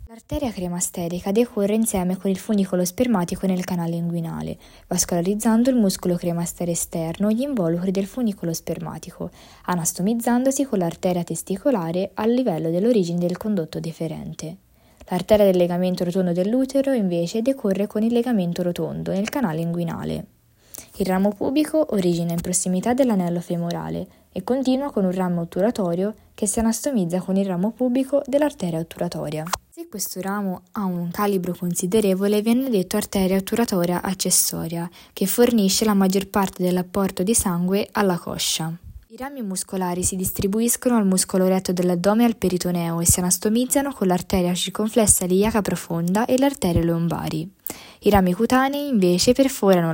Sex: female